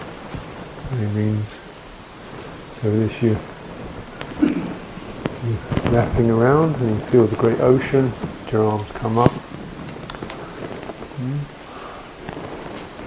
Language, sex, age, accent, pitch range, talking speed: English, male, 50-69, British, 110-125 Hz, 80 wpm